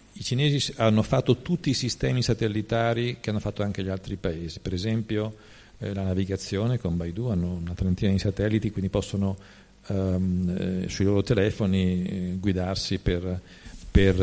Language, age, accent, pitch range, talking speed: Italian, 50-69, native, 95-120 Hz, 160 wpm